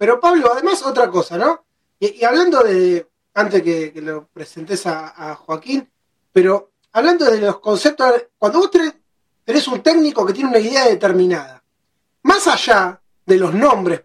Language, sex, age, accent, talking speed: Spanish, male, 30-49, Argentinian, 175 wpm